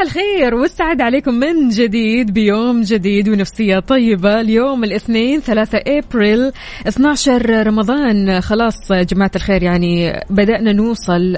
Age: 20-39